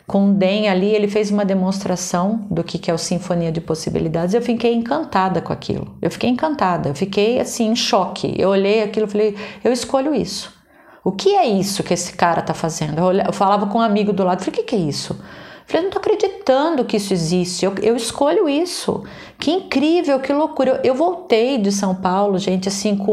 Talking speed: 225 wpm